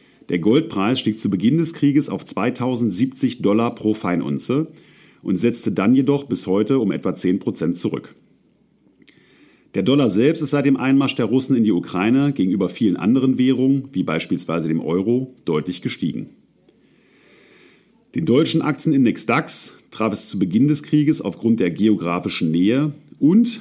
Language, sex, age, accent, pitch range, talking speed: German, male, 40-59, German, 105-140 Hz, 150 wpm